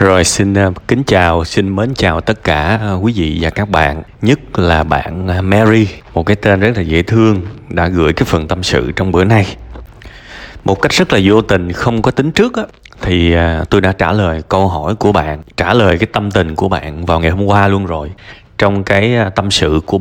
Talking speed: 215 wpm